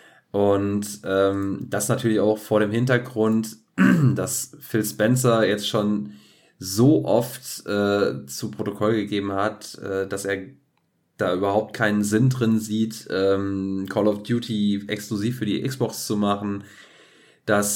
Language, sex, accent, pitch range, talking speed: German, male, German, 100-120 Hz, 135 wpm